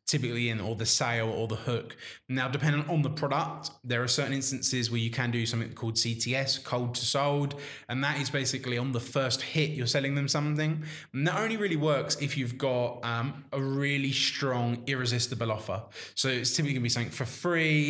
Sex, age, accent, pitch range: male, 20-39, British, 120-145 Hz